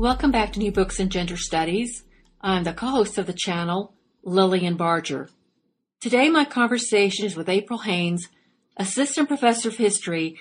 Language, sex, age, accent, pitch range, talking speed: English, female, 40-59, American, 185-235 Hz, 155 wpm